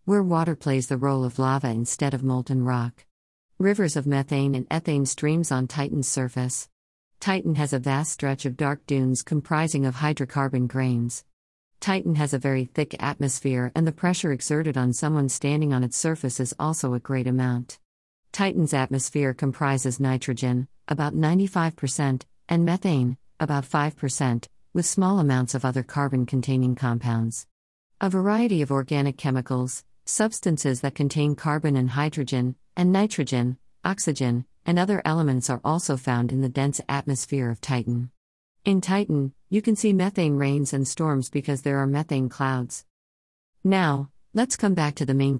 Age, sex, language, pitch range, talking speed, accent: 50-69, female, English, 130-155 Hz, 155 wpm, American